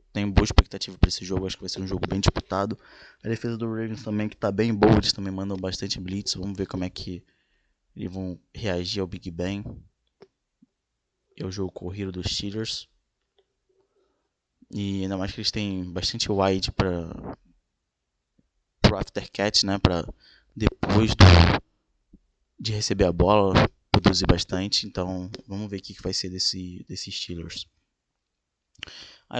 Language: Portuguese